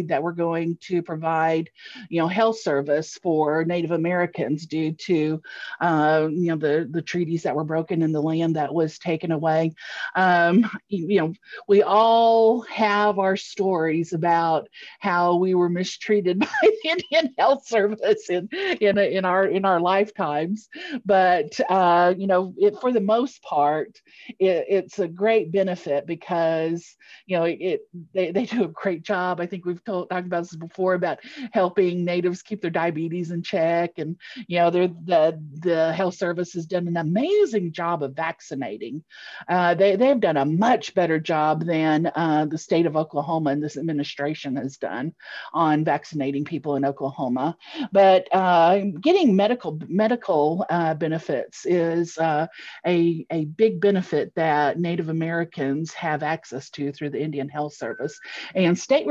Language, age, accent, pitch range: English, 50-69, American, 160-195 Hz